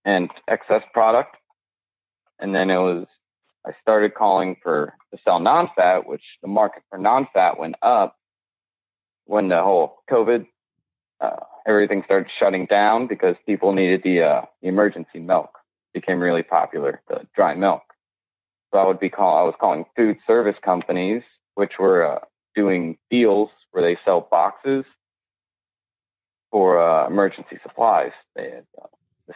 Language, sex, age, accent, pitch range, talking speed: English, male, 30-49, American, 90-120 Hz, 145 wpm